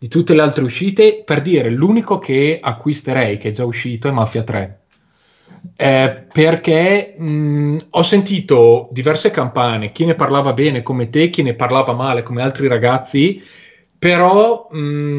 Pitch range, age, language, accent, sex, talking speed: 115-155 Hz, 30-49, Italian, native, male, 145 wpm